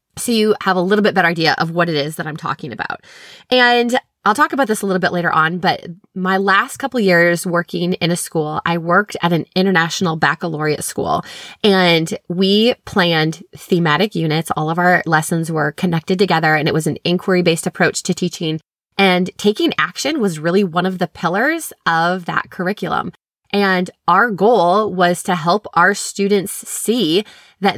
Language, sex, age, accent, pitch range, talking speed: English, female, 20-39, American, 170-205 Hz, 185 wpm